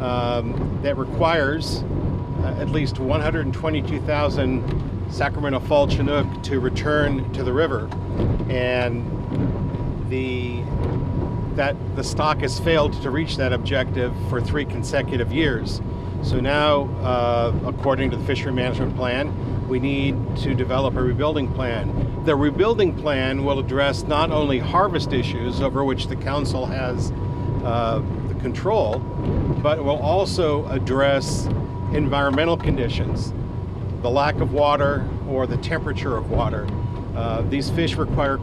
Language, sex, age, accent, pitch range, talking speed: English, male, 50-69, American, 110-135 Hz, 130 wpm